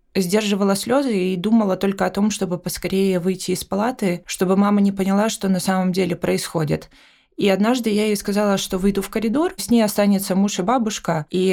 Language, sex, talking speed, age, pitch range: Ukrainian, female, 195 wpm, 20-39, 175-205 Hz